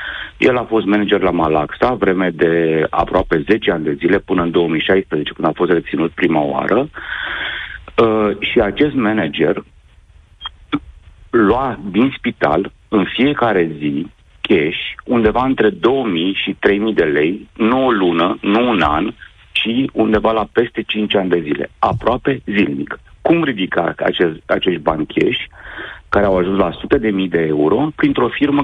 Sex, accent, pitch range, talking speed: male, native, 85-115 Hz, 145 wpm